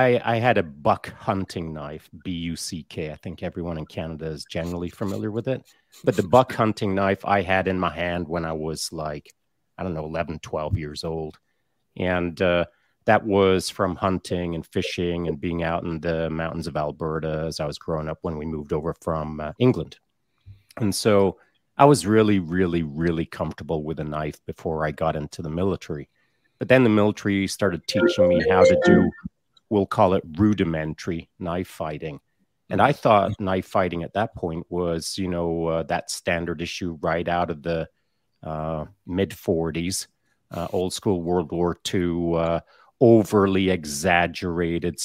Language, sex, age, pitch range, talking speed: English, male, 30-49, 80-95 Hz, 175 wpm